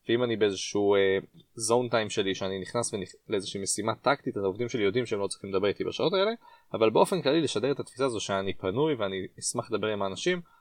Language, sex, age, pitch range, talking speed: Hebrew, male, 20-39, 100-165 Hz, 220 wpm